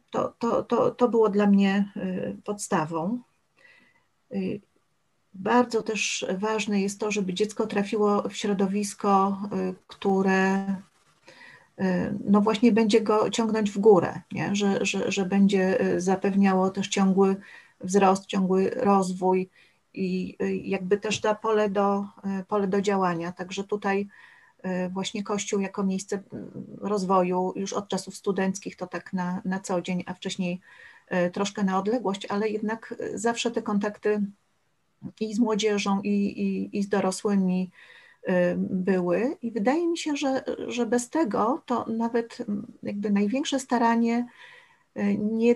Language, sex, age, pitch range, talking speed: Polish, female, 40-59, 190-225 Hz, 125 wpm